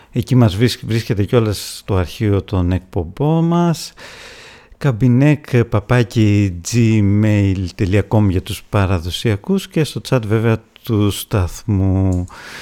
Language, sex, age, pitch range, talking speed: English, male, 50-69, 100-135 Hz, 100 wpm